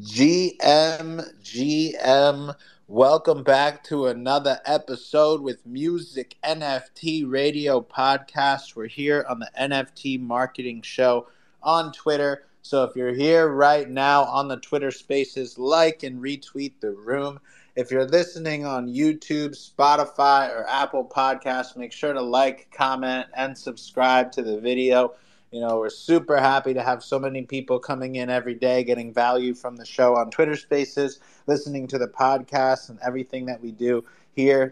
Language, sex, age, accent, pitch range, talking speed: English, male, 30-49, American, 125-145 Hz, 150 wpm